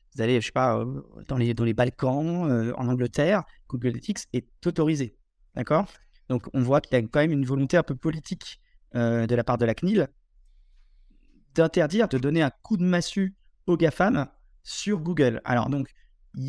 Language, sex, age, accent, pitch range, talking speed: French, male, 20-39, French, 125-170 Hz, 195 wpm